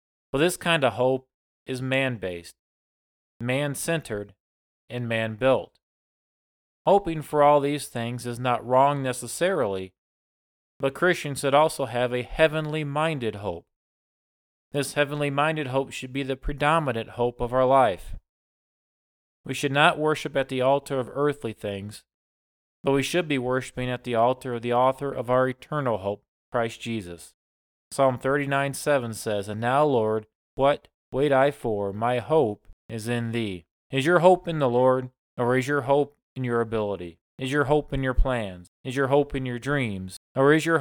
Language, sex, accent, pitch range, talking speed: English, male, American, 115-145 Hz, 160 wpm